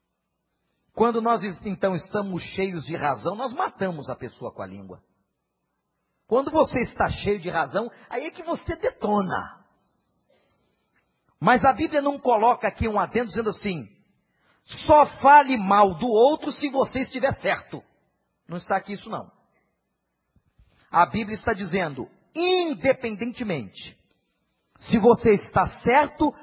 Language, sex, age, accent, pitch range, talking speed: Portuguese, male, 40-59, Brazilian, 155-240 Hz, 130 wpm